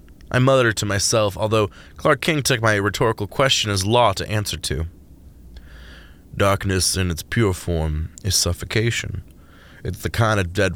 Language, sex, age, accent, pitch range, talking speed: English, male, 20-39, American, 85-115 Hz, 155 wpm